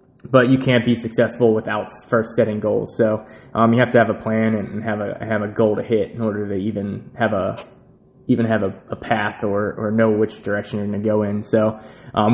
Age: 20-39